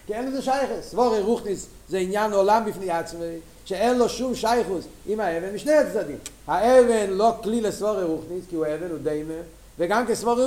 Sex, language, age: male, Hebrew, 50-69